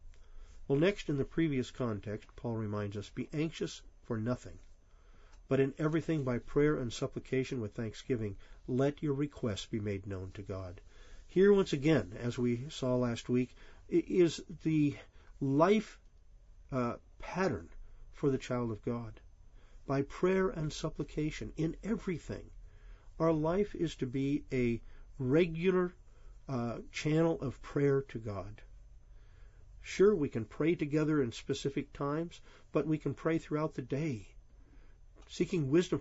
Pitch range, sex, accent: 105-155 Hz, male, American